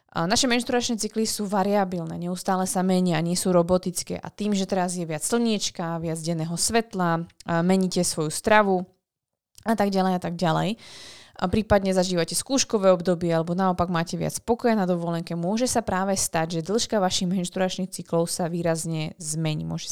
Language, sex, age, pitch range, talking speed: Slovak, female, 20-39, 175-200 Hz, 170 wpm